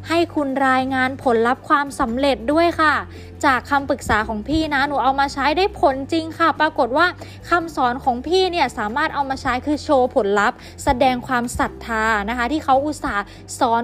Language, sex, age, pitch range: Thai, female, 20-39, 240-290 Hz